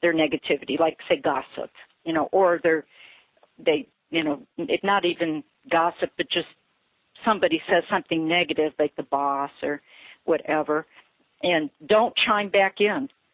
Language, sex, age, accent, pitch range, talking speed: English, female, 50-69, American, 155-220 Hz, 145 wpm